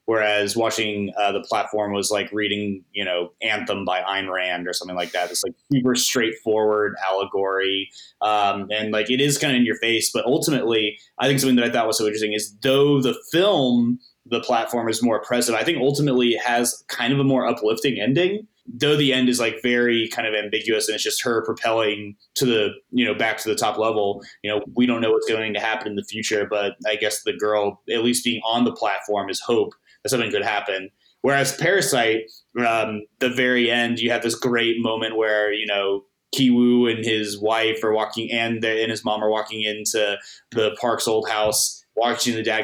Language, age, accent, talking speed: English, 20-39, American, 210 wpm